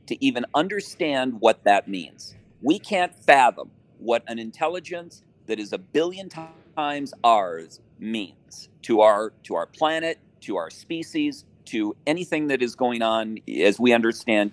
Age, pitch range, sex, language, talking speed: 40-59, 110-165 Hz, male, English, 150 wpm